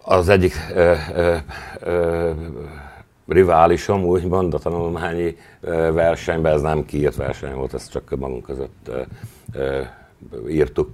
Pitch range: 75-100 Hz